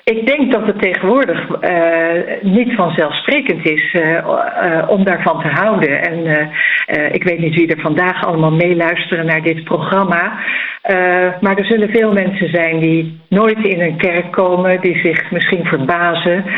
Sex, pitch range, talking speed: female, 165-200 Hz, 170 wpm